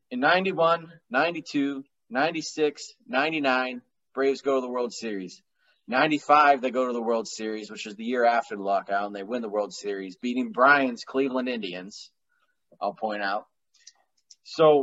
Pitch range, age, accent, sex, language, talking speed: 115-150 Hz, 20-39, American, male, English, 160 wpm